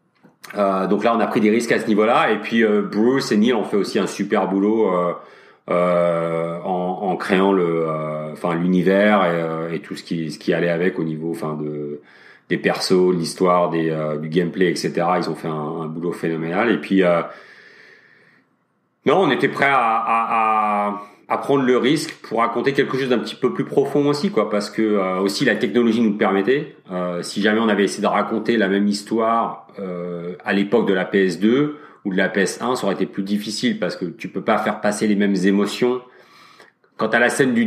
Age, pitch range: 40-59, 85-110 Hz